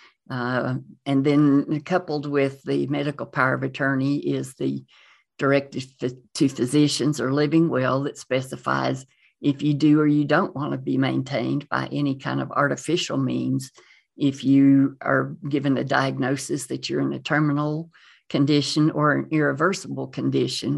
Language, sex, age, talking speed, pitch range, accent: English, female, 50-69, 150 wpm, 130-145 Hz, American